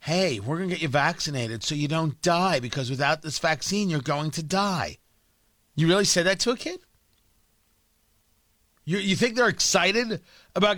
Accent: American